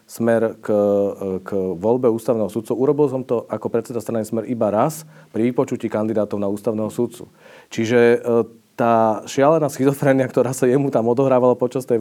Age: 40-59